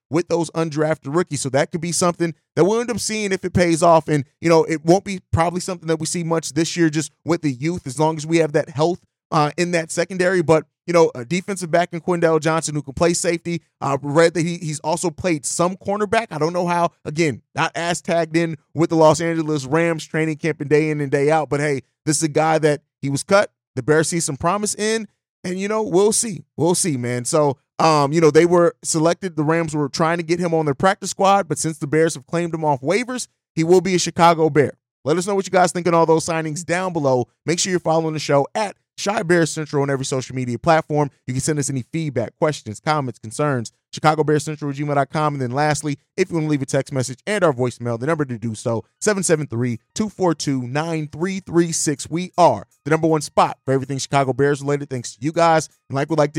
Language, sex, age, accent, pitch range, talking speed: English, male, 30-49, American, 145-170 Hz, 240 wpm